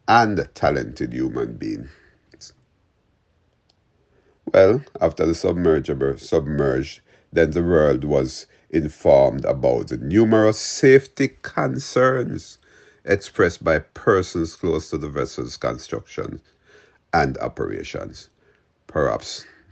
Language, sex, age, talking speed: English, male, 60-79, 90 wpm